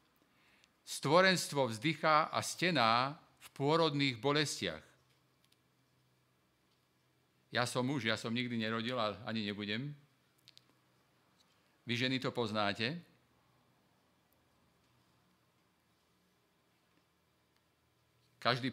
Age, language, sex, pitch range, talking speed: 50-69, Slovak, male, 110-140 Hz, 70 wpm